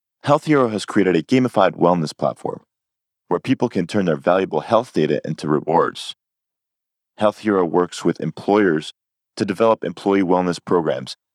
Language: English